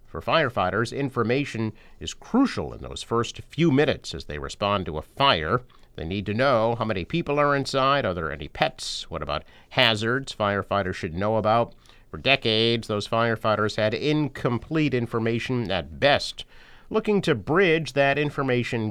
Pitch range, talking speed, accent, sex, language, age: 105-135 Hz, 160 wpm, American, male, English, 50-69